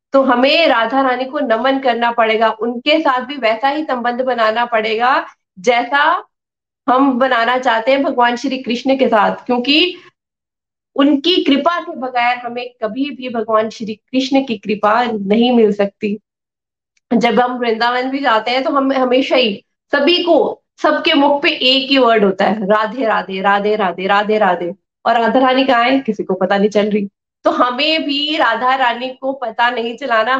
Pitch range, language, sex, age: 220-270 Hz, Hindi, female, 20-39